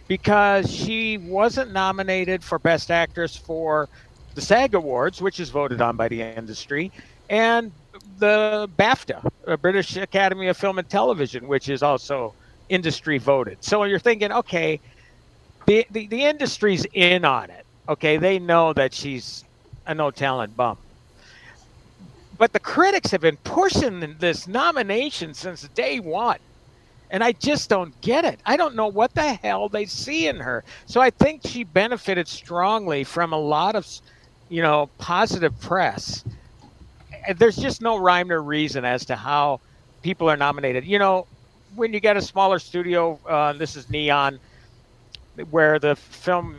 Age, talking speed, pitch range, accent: 50-69, 155 wpm, 140-195 Hz, American